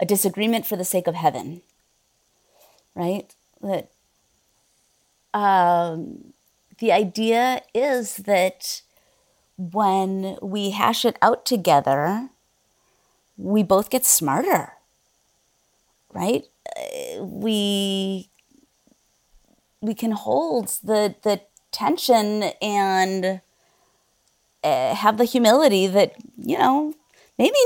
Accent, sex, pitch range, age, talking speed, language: American, female, 175-225 Hz, 30-49, 90 wpm, English